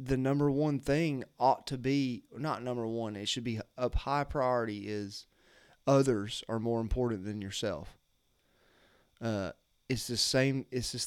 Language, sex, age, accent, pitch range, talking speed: English, male, 30-49, American, 100-125 Hz, 155 wpm